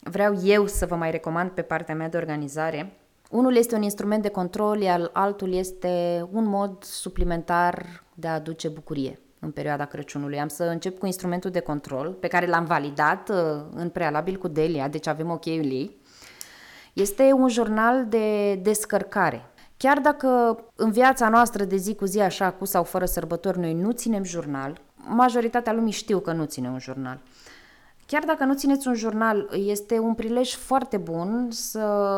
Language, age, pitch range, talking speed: Romanian, 20-39, 170-220 Hz, 170 wpm